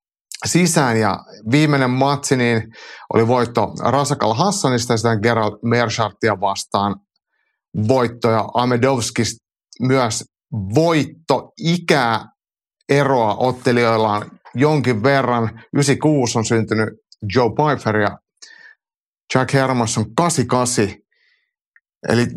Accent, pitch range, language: native, 110-140 Hz, Finnish